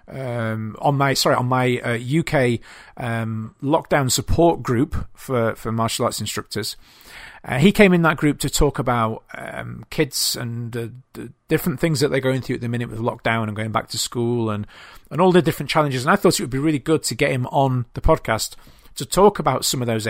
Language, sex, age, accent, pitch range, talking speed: English, male, 40-59, British, 120-155 Hz, 220 wpm